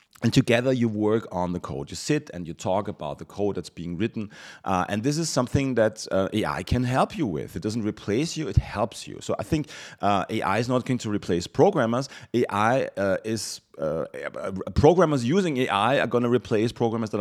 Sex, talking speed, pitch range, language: male, 215 wpm, 95-125 Hz, English